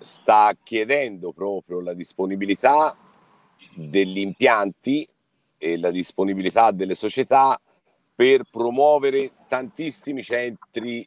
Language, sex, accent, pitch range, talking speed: Italian, male, native, 100-130 Hz, 85 wpm